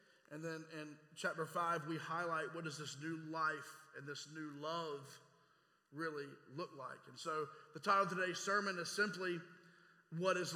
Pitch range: 160-195 Hz